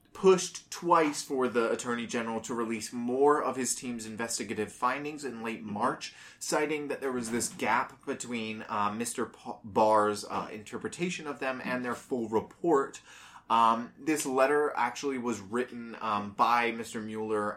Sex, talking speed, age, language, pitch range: male, 155 wpm, 20-39, English, 110-130 Hz